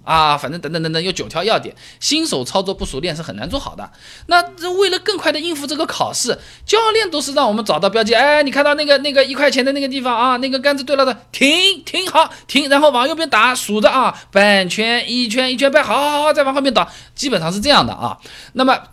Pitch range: 170-280 Hz